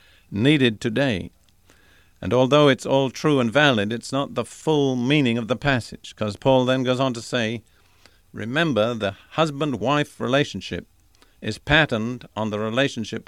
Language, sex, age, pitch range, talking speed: English, male, 50-69, 105-135 Hz, 150 wpm